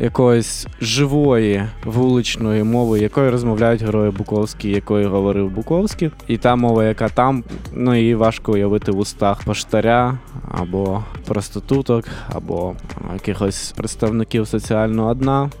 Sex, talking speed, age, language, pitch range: male, 120 wpm, 20-39, Ukrainian, 115-135 Hz